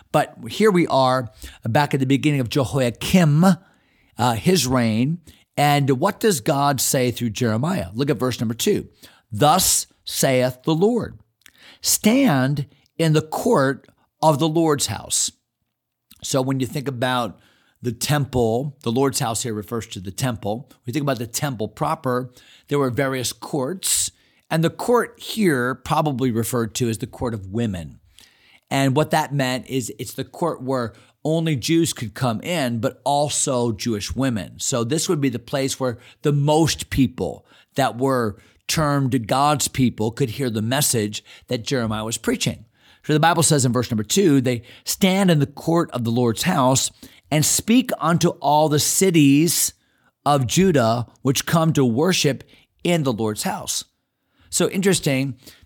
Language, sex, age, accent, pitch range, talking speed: English, male, 50-69, American, 120-150 Hz, 160 wpm